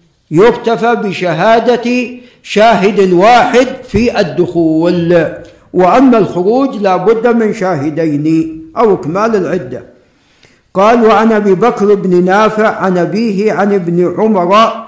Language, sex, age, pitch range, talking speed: Arabic, male, 60-79, 185-230 Hz, 105 wpm